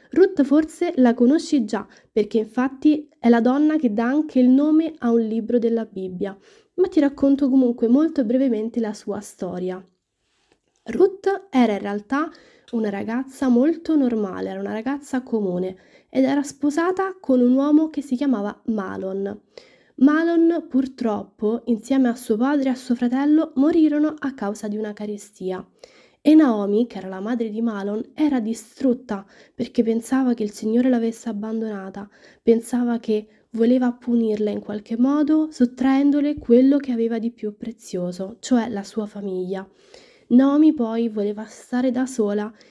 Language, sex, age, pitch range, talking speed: Italian, female, 20-39, 215-275 Hz, 150 wpm